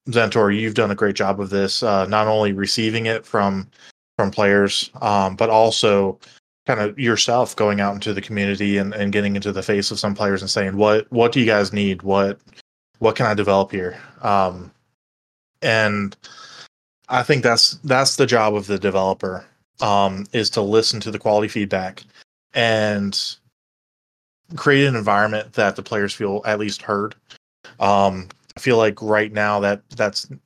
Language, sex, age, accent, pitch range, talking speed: English, male, 20-39, American, 100-110 Hz, 170 wpm